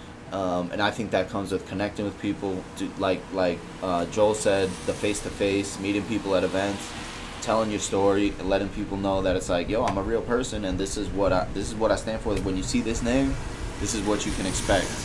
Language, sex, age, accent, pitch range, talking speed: English, male, 20-39, American, 90-110 Hz, 245 wpm